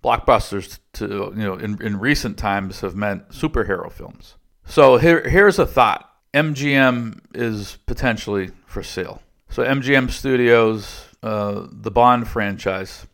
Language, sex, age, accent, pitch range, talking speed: English, male, 50-69, American, 95-115 Hz, 130 wpm